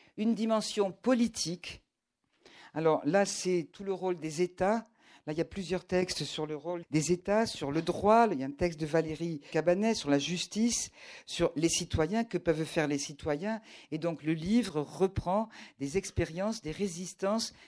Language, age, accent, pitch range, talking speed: French, 50-69, French, 165-205 Hz, 180 wpm